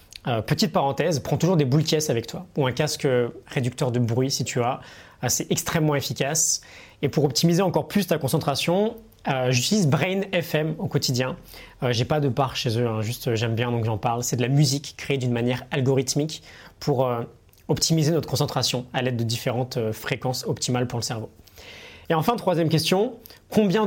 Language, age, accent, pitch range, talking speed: French, 20-39, French, 130-165 Hz, 205 wpm